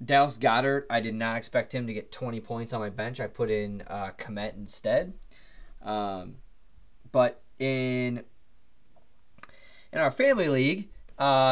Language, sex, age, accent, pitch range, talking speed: English, male, 20-39, American, 115-155 Hz, 145 wpm